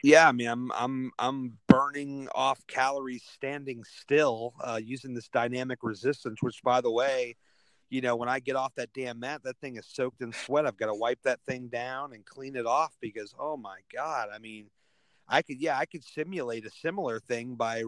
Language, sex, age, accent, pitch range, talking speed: English, male, 40-59, American, 120-140 Hz, 210 wpm